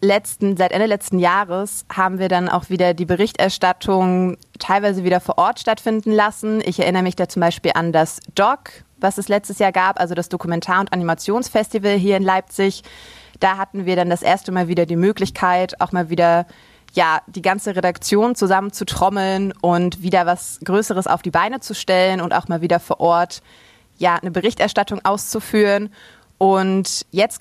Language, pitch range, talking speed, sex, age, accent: German, 175-200 Hz, 175 wpm, female, 20-39, German